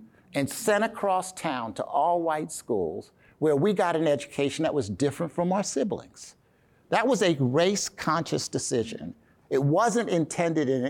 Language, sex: English, male